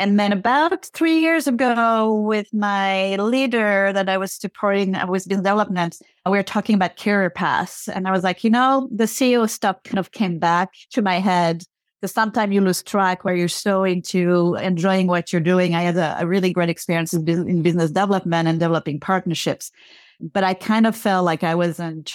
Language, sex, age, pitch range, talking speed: English, female, 30-49, 175-205 Hz, 200 wpm